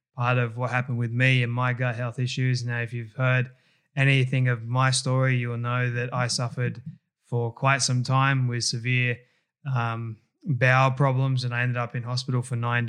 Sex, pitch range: male, 125-140 Hz